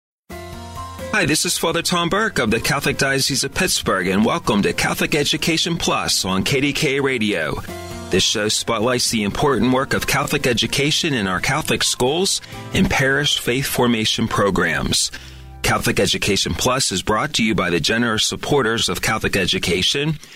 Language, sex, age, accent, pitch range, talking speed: English, male, 40-59, American, 100-140 Hz, 155 wpm